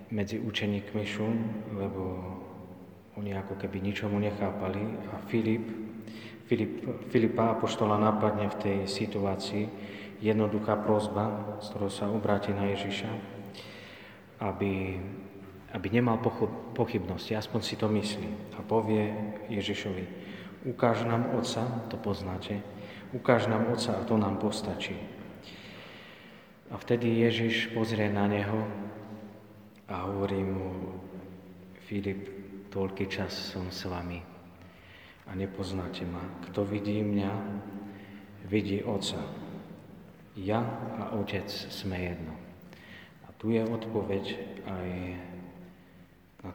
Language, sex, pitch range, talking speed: Slovak, male, 95-110 Hz, 105 wpm